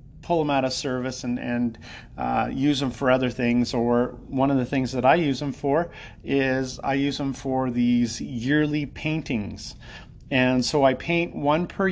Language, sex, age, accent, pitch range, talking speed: English, male, 40-59, American, 125-150 Hz, 185 wpm